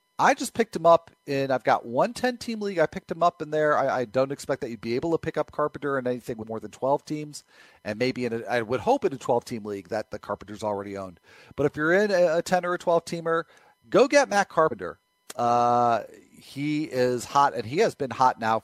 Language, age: English, 40-59